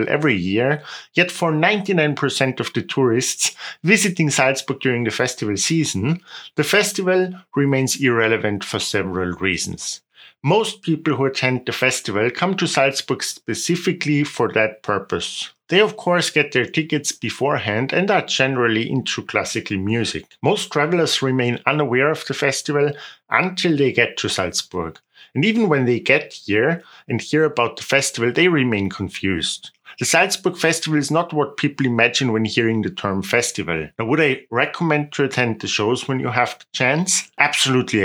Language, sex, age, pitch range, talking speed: English, male, 50-69, 115-155 Hz, 160 wpm